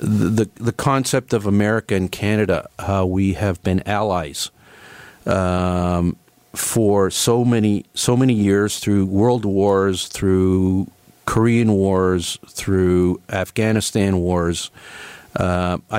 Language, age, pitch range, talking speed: English, 50-69, 90-110 Hz, 115 wpm